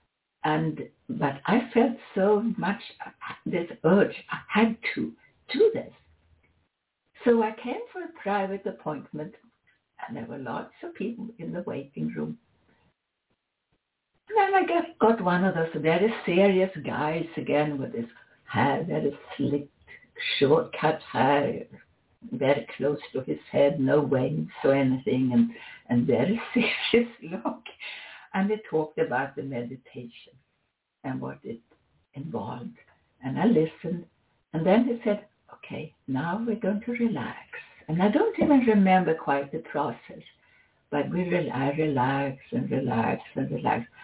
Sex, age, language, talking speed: female, 60-79, English, 140 wpm